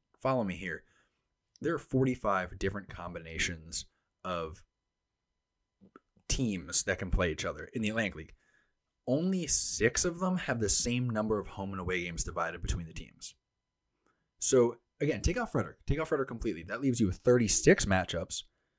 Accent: American